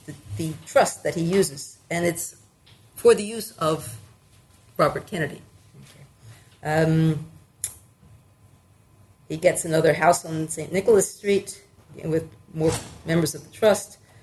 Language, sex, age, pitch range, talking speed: English, female, 40-59, 130-180 Hz, 125 wpm